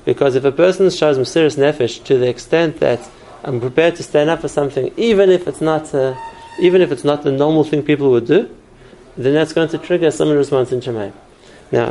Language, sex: English, male